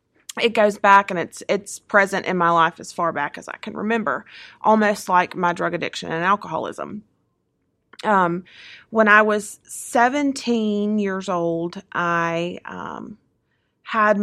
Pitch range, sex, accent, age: 175-205 Hz, female, American, 30-49